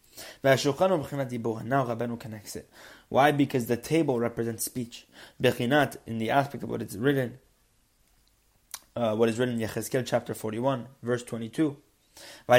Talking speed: 115 wpm